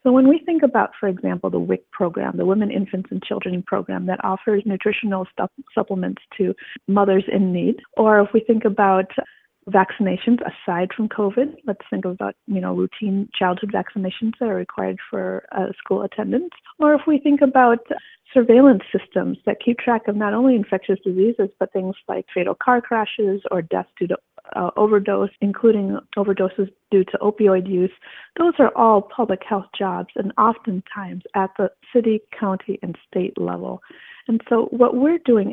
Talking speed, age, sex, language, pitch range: 170 wpm, 30-49, female, English, 195-240 Hz